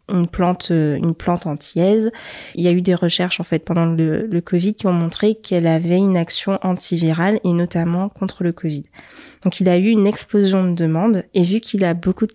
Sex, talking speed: female, 215 wpm